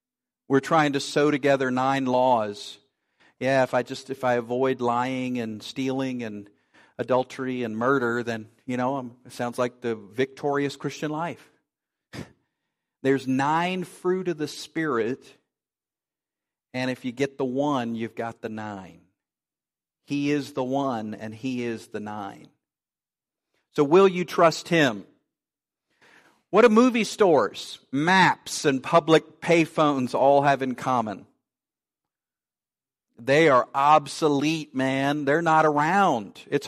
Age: 50-69